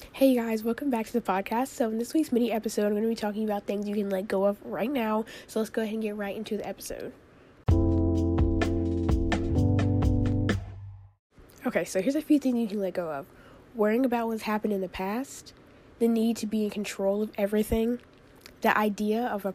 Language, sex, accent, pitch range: English, female, American, 195-230 Hz